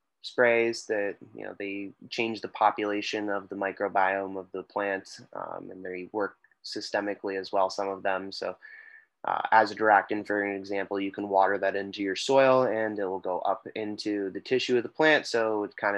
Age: 20-39